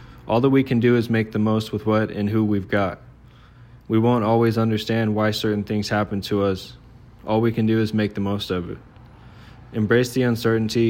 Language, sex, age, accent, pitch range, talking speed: English, male, 20-39, American, 105-120 Hz, 210 wpm